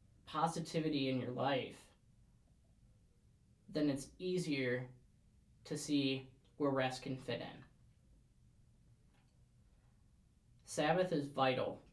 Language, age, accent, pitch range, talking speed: English, 10-29, American, 130-155 Hz, 85 wpm